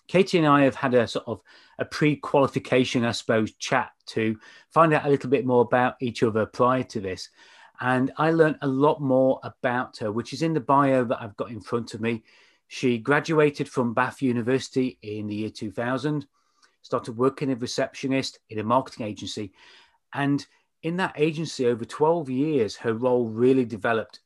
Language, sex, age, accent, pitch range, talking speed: English, male, 30-49, British, 115-145 Hz, 185 wpm